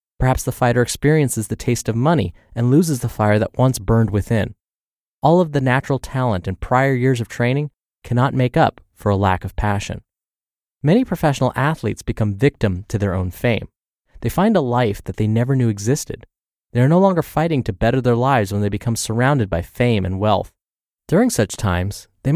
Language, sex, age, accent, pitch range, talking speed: English, male, 20-39, American, 100-130 Hz, 195 wpm